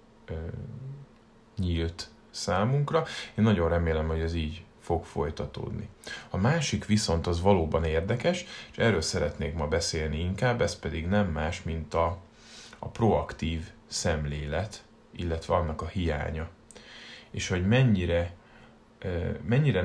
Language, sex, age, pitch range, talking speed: Hungarian, male, 30-49, 80-105 Hz, 120 wpm